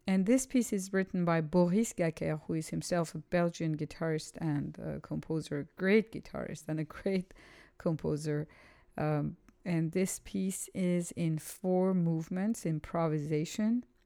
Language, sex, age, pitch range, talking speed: English, female, 50-69, 155-180 Hz, 140 wpm